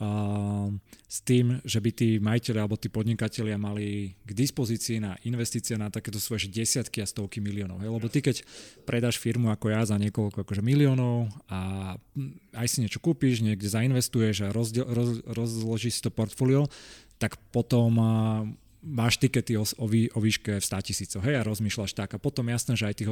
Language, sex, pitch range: Slovak, male, 105-120 Hz